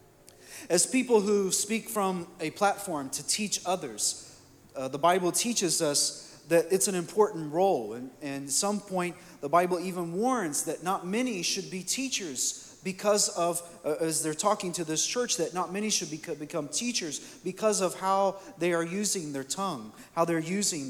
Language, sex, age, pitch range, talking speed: English, male, 40-59, 145-195 Hz, 170 wpm